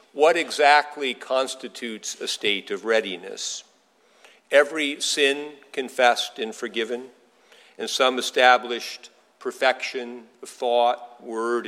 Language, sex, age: English, male, 50-69